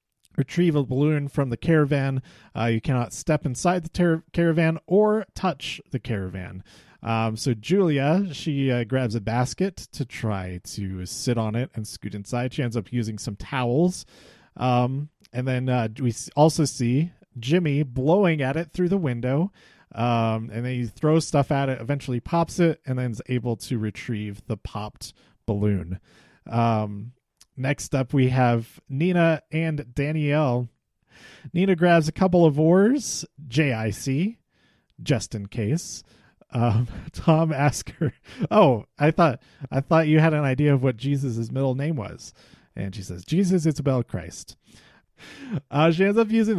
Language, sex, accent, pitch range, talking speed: English, male, American, 120-160 Hz, 160 wpm